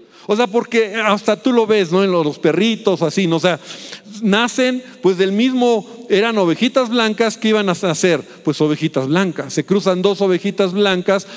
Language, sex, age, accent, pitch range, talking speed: Spanish, male, 50-69, Mexican, 175-225 Hz, 185 wpm